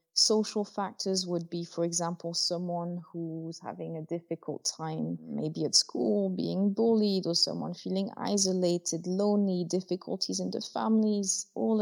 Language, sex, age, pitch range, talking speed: English, female, 20-39, 170-200 Hz, 135 wpm